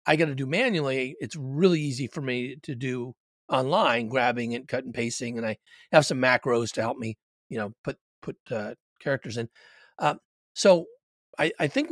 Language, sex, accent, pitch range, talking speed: English, male, American, 125-155 Hz, 190 wpm